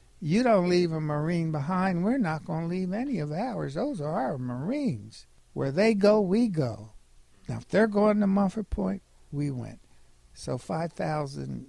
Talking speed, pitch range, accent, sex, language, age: 175 wpm, 115-165 Hz, American, male, English, 60-79